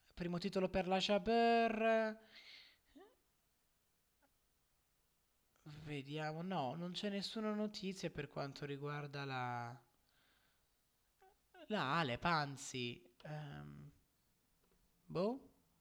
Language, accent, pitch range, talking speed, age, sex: Italian, native, 135-195 Hz, 70 wpm, 20-39, male